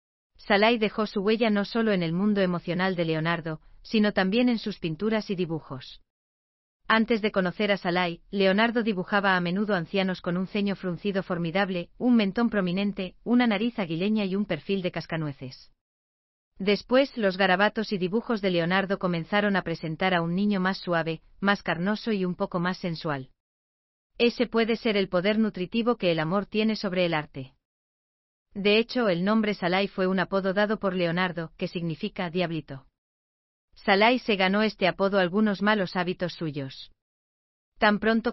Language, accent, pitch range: German, Spanish, 165-210 Hz